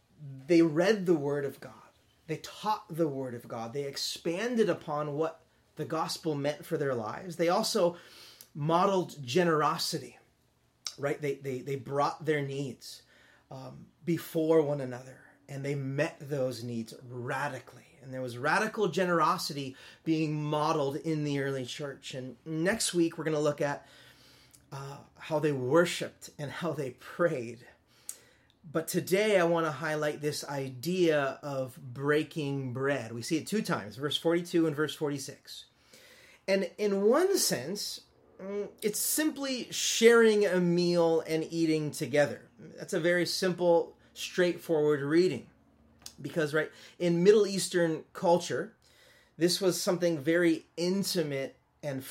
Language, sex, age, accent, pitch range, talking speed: English, male, 30-49, American, 140-175 Hz, 140 wpm